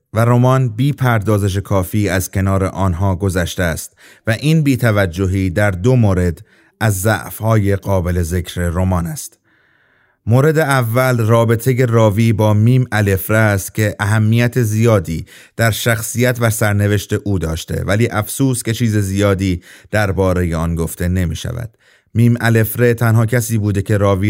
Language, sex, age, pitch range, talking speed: Persian, male, 30-49, 95-120 Hz, 140 wpm